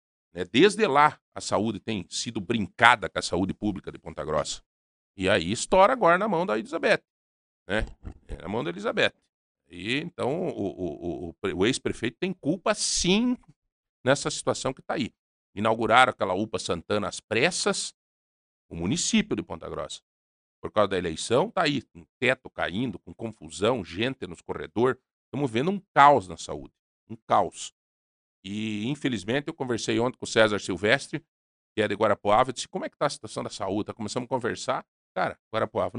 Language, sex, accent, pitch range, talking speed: Portuguese, male, Brazilian, 90-135 Hz, 175 wpm